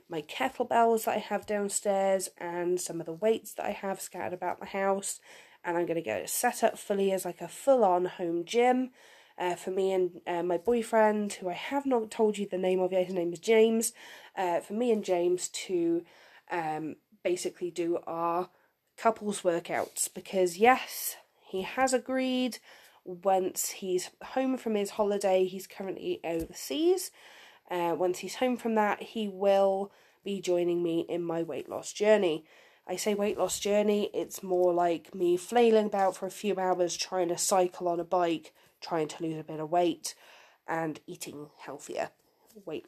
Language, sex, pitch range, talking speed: English, female, 175-220 Hz, 180 wpm